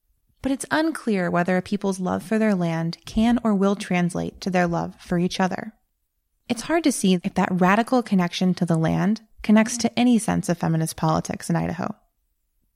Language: English